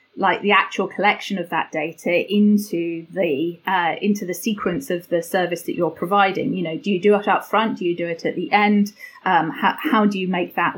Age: 30-49